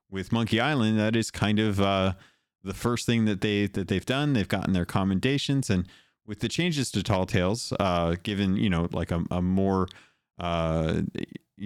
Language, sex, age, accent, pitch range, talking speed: English, male, 30-49, American, 85-105 Hz, 185 wpm